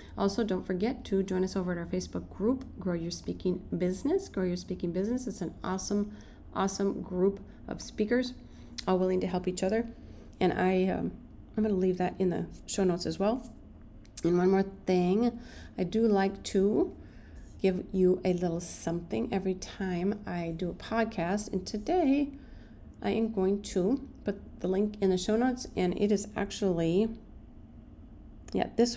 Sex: female